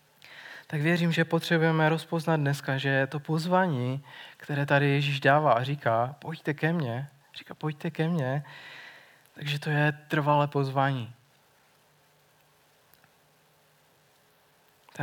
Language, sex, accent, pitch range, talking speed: Czech, male, native, 140-155 Hz, 115 wpm